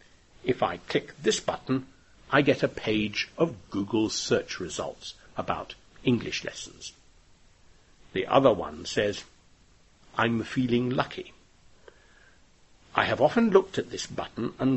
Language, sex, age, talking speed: English, male, 60-79, 125 wpm